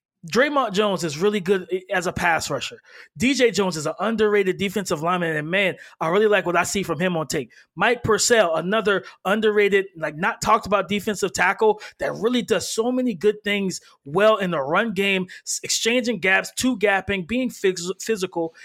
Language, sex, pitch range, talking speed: English, male, 185-235 Hz, 180 wpm